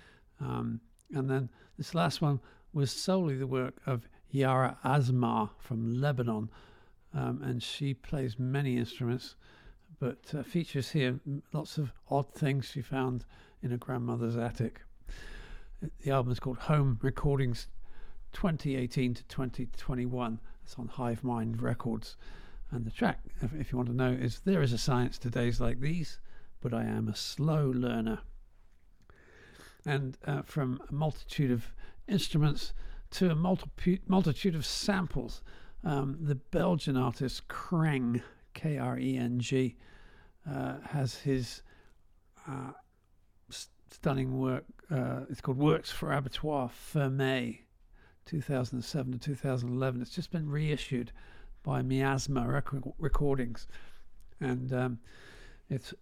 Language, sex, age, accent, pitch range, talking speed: English, male, 50-69, British, 120-145 Hz, 130 wpm